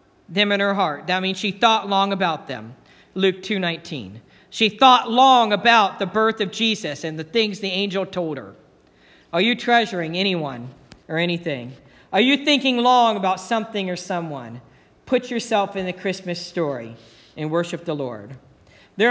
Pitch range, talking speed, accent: 170-230 Hz, 165 wpm, American